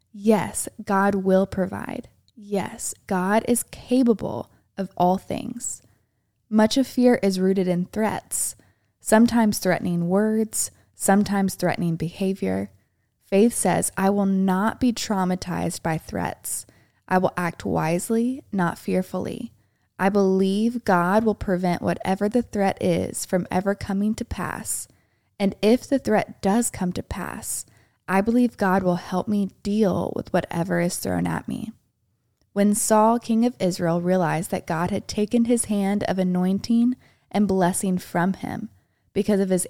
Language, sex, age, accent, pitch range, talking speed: English, female, 20-39, American, 180-215 Hz, 145 wpm